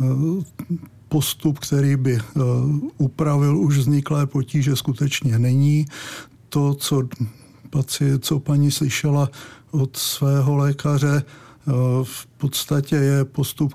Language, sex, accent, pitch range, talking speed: Czech, male, native, 130-145 Hz, 90 wpm